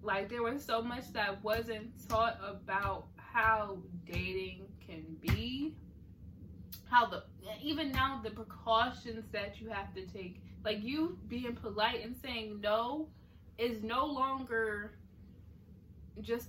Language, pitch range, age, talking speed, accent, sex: English, 195-245 Hz, 20-39, 125 wpm, American, female